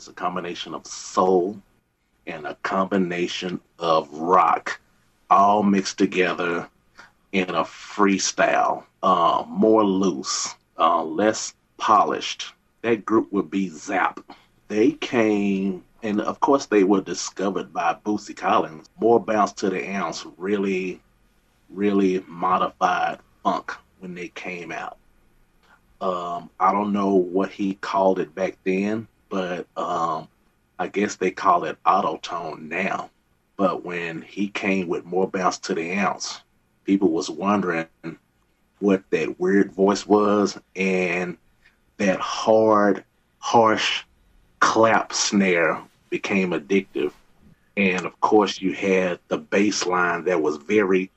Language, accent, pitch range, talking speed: English, American, 90-100 Hz, 125 wpm